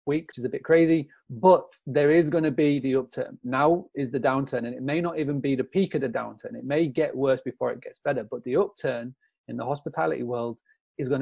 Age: 30-49